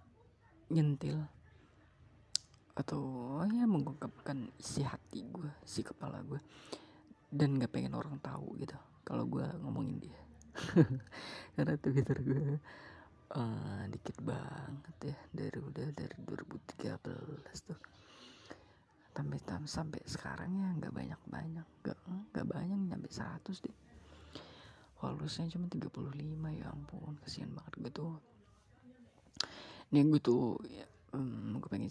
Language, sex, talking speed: Indonesian, female, 110 wpm